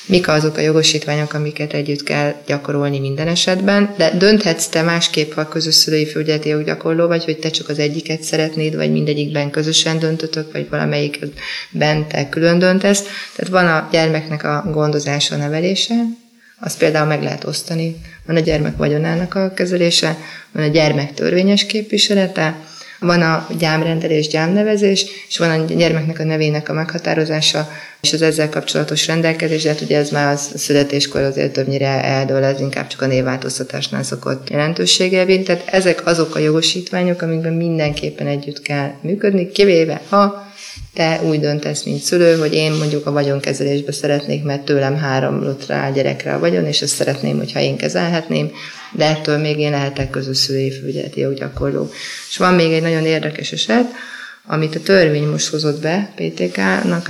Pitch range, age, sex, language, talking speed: 145-170 Hz, 20-39, female, Hungarian, 160 wpm